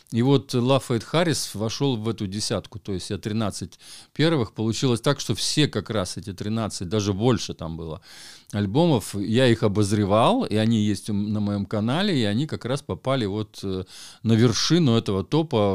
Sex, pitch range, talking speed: male, 100-130 Hz, 170 wpm